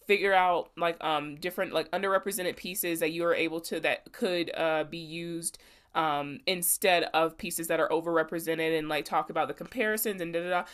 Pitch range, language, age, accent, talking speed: 165-210 Hz, English, 20-39, American, 195 wpm